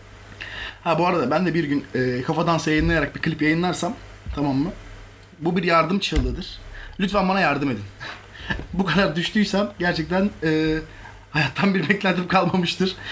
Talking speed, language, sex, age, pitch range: 150 wpm, Turkish, male, 30-49, 135-195 Hz